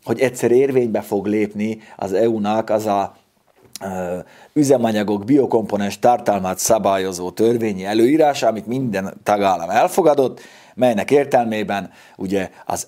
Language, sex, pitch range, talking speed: Hungarian, male, 95-120 Hz, 105 wpm